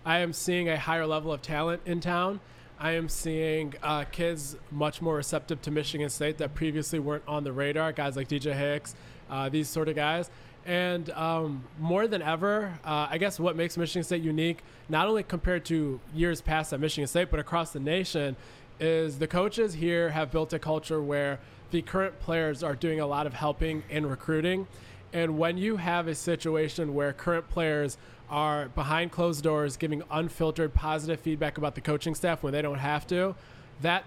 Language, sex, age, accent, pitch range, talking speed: English, male, 20-39, American, 145-170 Hz, 190 wpm